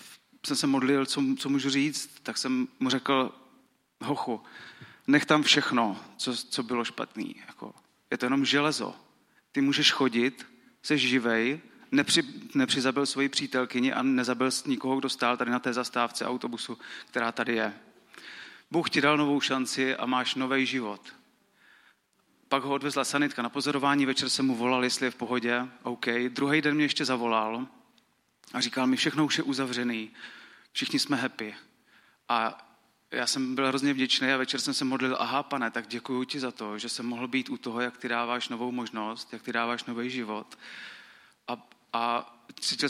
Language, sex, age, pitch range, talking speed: Czech, male, 30-49, 120-140 Hz, 170 wpm